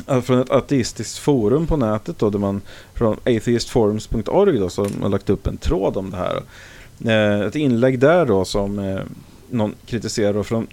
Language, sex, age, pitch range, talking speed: English, male, 30-49, 95-125 Hz, 170 wpm